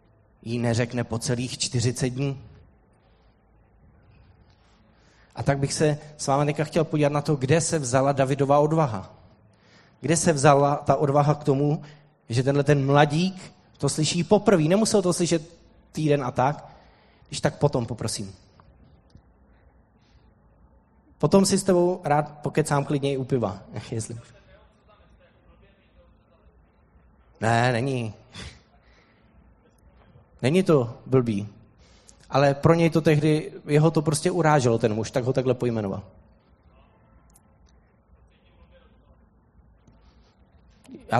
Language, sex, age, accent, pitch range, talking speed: Czech, male, 20-39, native, 105-150 Hz, 110 wpm